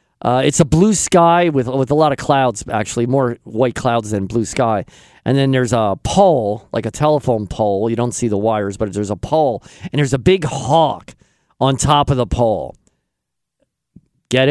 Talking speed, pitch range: 195 wpm, 125-180 Hz